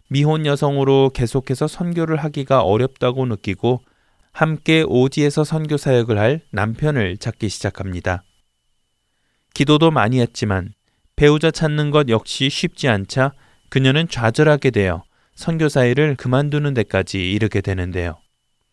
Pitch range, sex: 105-150 Hz, male